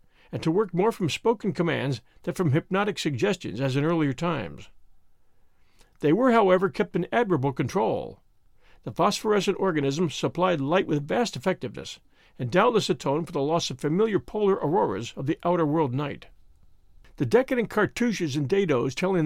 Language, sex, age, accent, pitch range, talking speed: English, male, 50-69, American, 140-195 Hz, 160 wpm